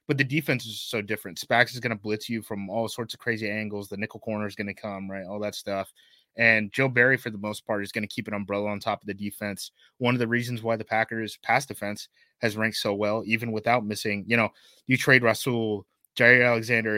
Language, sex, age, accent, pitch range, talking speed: English, male, 20-39, American, 100-120 Hz, 245 wpm